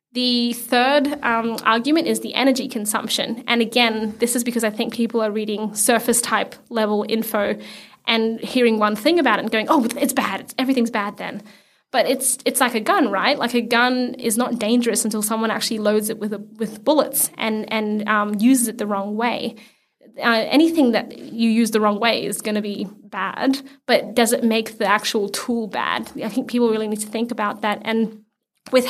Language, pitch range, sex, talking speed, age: English, 215-245 Hz, female, 205 wpm, 20-39